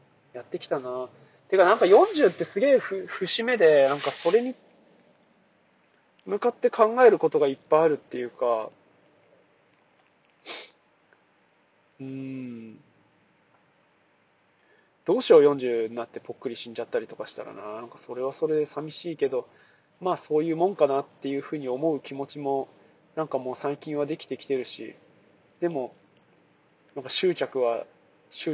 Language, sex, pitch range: Japanese, male, 135-165 Hz